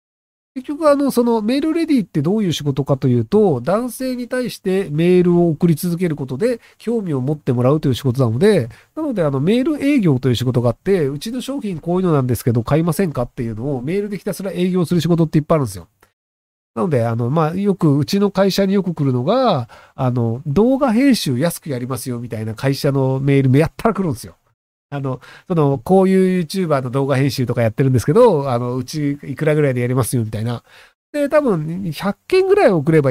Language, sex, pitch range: Japanese, male, 130-205 Hz